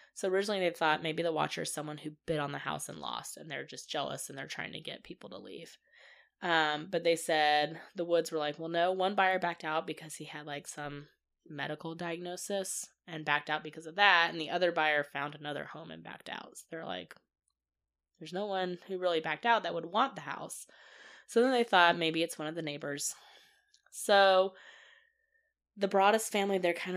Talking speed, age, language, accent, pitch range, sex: 215 wpm, 20-39, English, American, 155-205 Hz, female